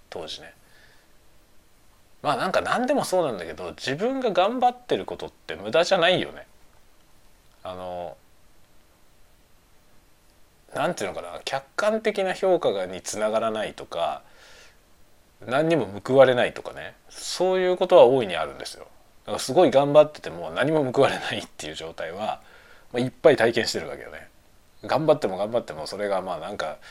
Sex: male